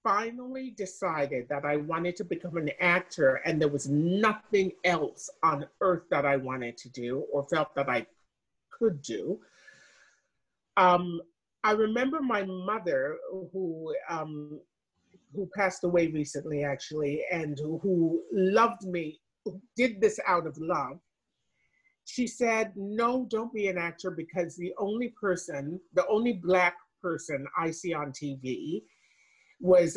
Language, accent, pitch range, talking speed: English, American, 160-205 Hz, 135 wpm